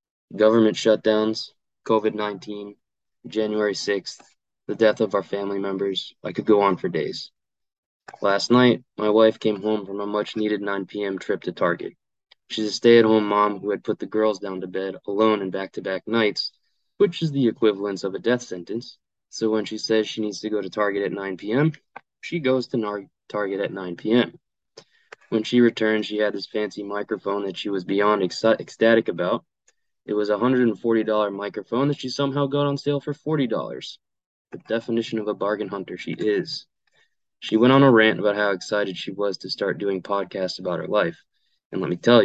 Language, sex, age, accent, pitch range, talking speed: English, male, 20-39, American, 100-115 Hz, 190 wpm